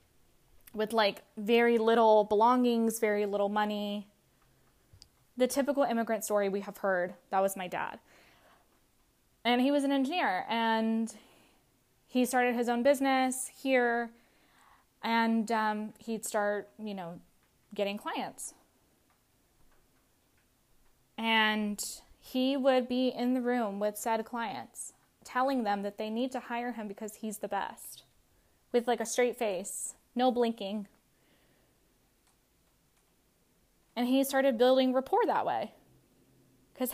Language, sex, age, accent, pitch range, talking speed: English, female, 10-29, American, 215-255 Hz, 125 wpm